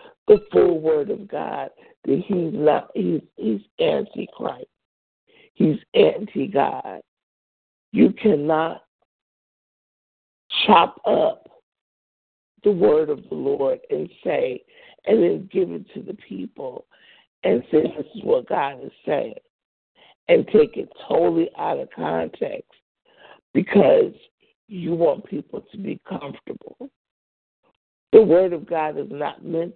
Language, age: English, 60-79